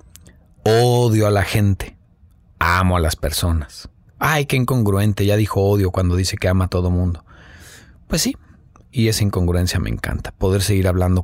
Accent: Mexican